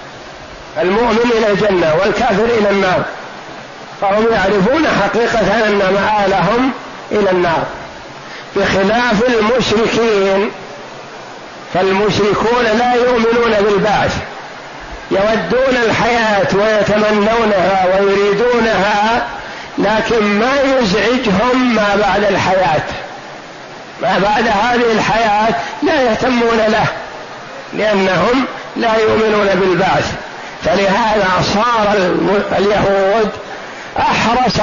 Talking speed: 75 wpm